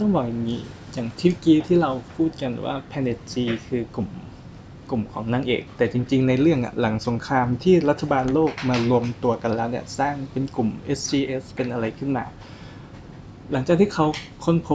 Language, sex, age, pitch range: Thai, male, 20-39, 120-150 Hz